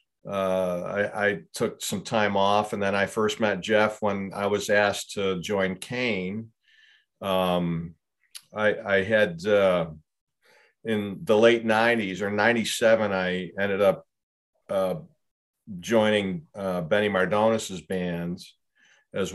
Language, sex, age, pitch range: English, male, 50-69, 95-105 Hz